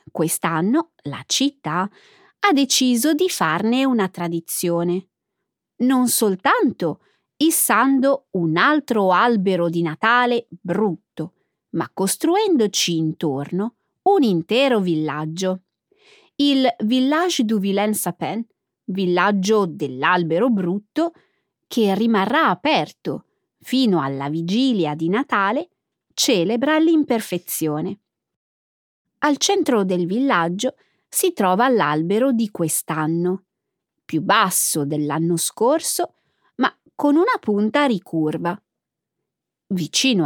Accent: native